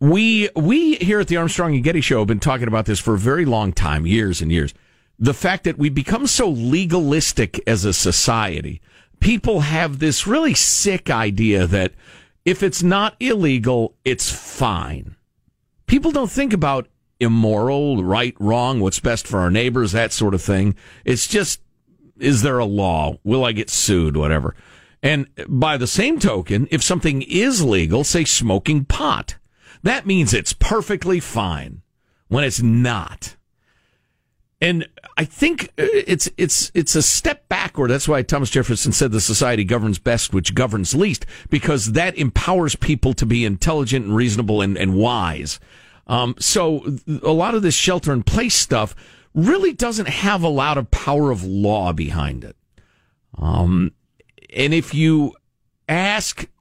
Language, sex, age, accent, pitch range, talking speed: English, male, 50-69, American, 105-165 Hz, 160 wpm